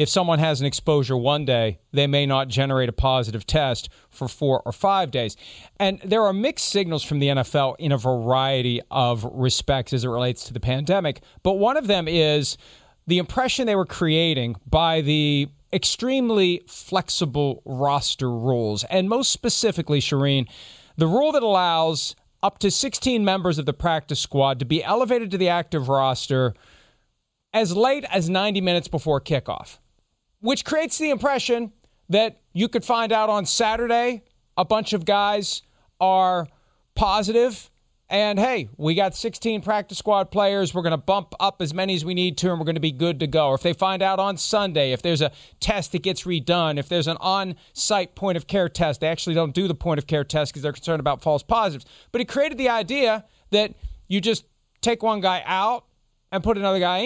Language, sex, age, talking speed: English, male, 40-59, 185 wpm